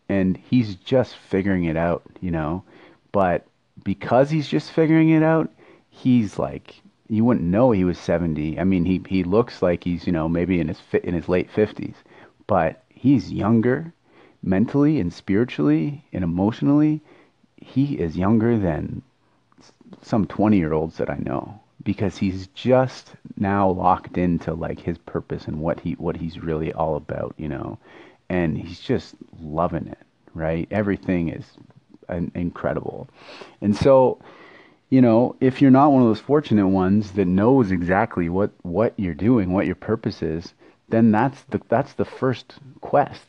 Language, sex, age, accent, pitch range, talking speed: English, male, 30-49, American, 85-125 Hz, 160 wpm